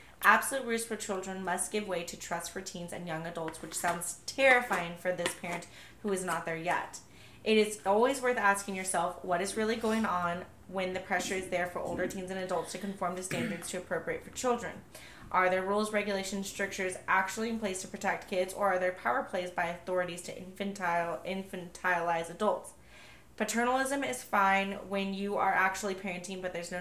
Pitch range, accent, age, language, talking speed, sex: 175-205 Hz, American, 20-39, English, 195 wpm, female